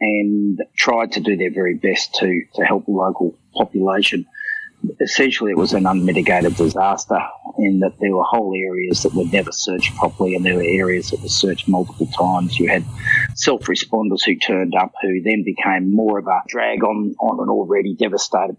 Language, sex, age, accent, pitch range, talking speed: English, male, 40-59, Australian, 95-120 Hz, 185 wpm